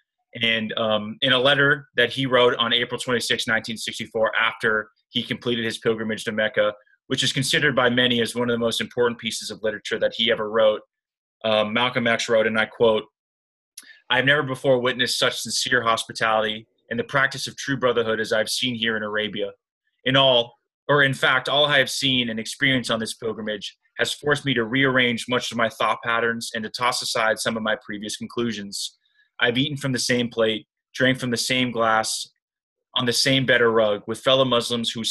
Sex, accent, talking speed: male, American, 200 wpm